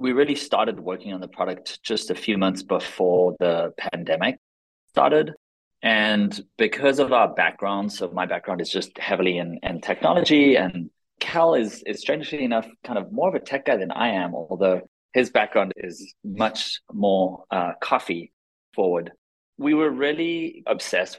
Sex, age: male, 30-49